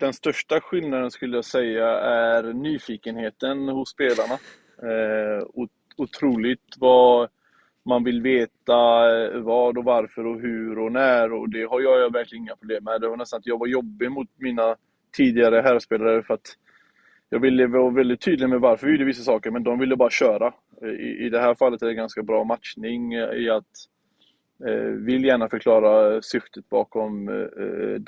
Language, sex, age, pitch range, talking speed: Swedish, male, 20-39, 115-135 Hz, 170 wpm